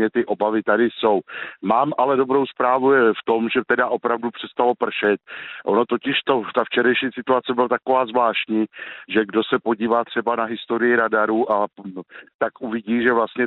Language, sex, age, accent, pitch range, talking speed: Czech, male, 50-69, native, 105-120 Hz, 165 wpm